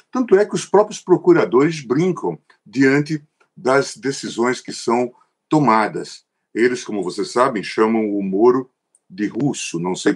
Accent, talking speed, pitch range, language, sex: Brazilian, 140 wpm, 135-185 Hz, Portuguese, male